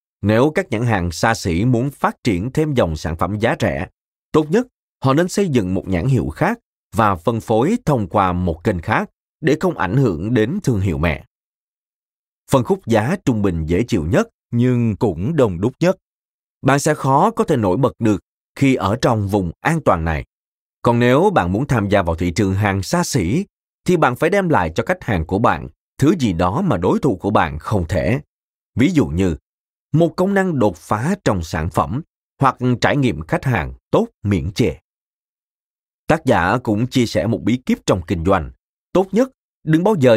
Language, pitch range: Vietnamese, 95-150 Hz